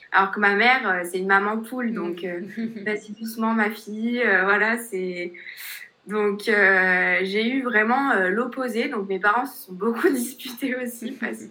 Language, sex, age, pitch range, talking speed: French, female, 20-39, 195-245 Hz, 175 wpm